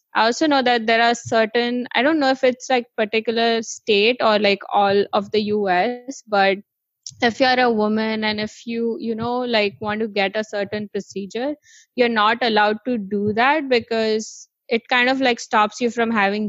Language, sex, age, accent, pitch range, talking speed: English, female, 20-39, Indian, 200-235 Hz, 195 wpm